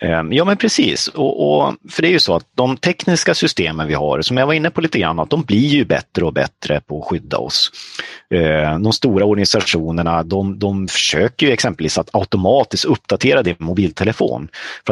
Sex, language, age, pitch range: male, Swedish, 30-49, 80-110 Hz